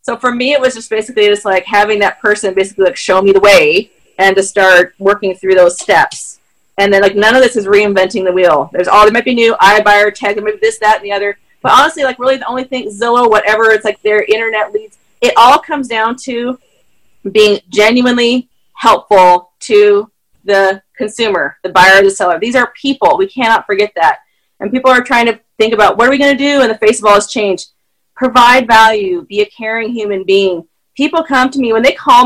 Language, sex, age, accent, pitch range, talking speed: English, female, 30-49, American, 195-250 Hz, 220 wpm